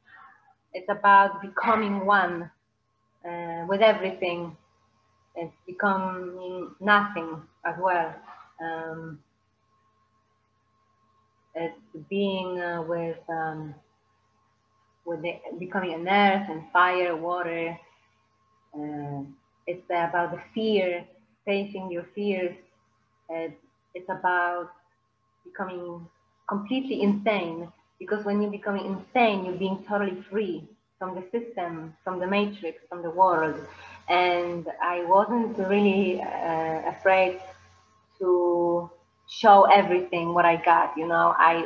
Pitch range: 155-195 Hz